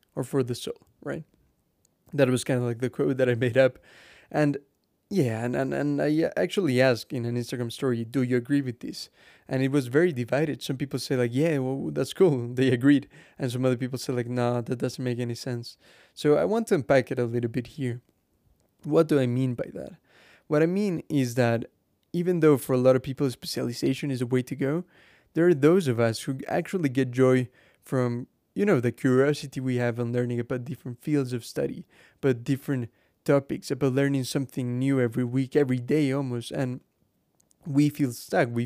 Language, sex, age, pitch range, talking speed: English, male, 20-39, 125-145 Hz, 210 wpm